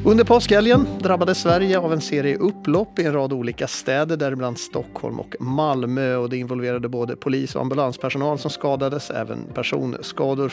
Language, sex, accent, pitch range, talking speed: Swedish, male, native, 125-165 Hz, 160 wpm